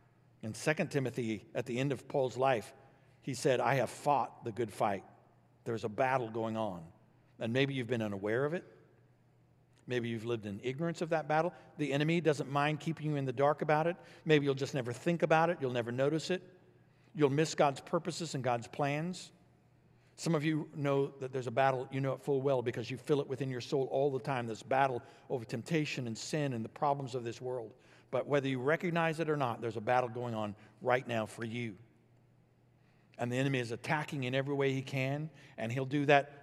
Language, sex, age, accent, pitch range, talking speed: English, male, 60-79, American, 120-150 Hz, 215 wpm